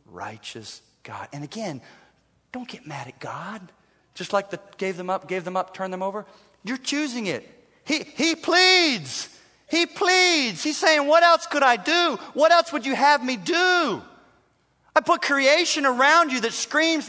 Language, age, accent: English, 40-59, American